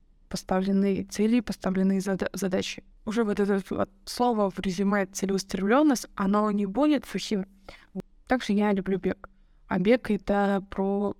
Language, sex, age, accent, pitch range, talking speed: Russian, female, 20-39, native, 195-235 Hz, 125 wpm